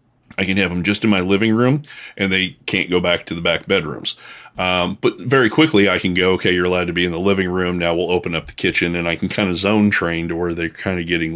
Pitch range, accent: 85-100 Hz, American